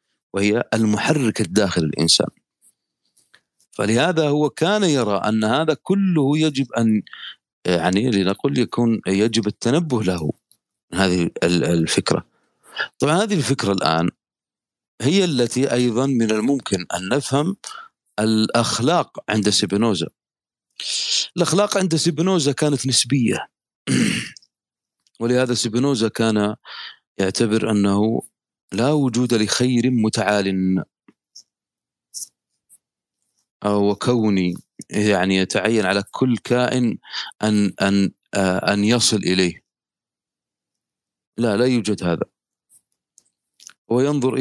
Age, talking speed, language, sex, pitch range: 40-59, 90 wpm, Arabic, male, 100-125 Hz